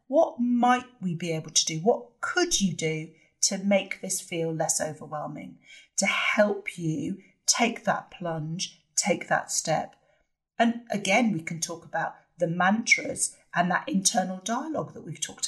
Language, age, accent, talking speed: English, 40-59, British, 160 wpm